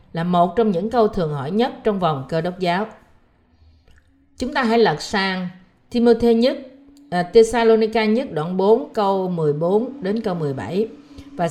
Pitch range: 175-240 Hz